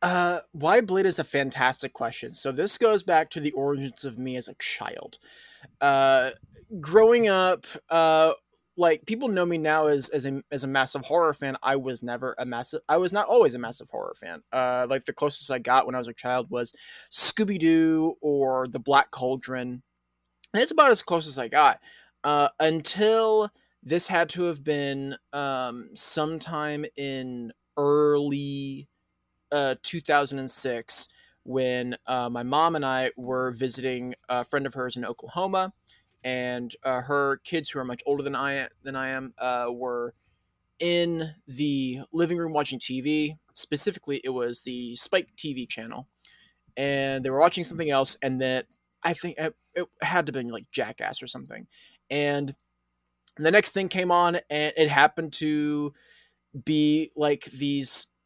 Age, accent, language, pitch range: 20-39, American, English, 130-160 Hz